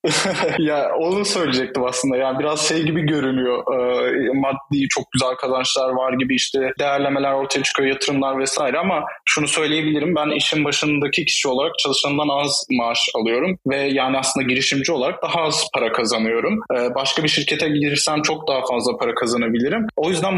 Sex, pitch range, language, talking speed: male, 135-160 Hz, Turkish, 160 wpm